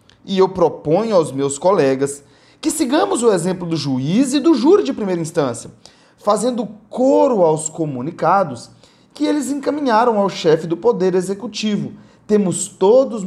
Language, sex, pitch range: Portuguese, male, 155-230 Hz